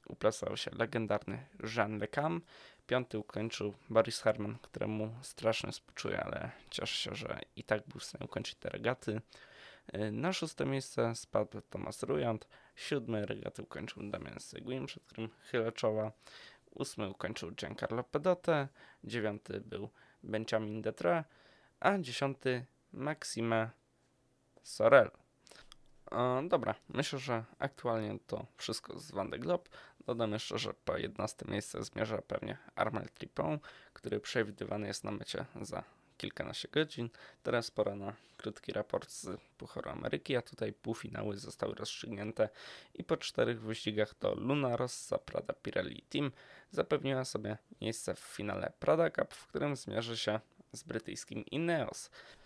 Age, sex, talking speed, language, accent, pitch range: 20-39, male, 130 wpm, Polish, native, 110-135 Hz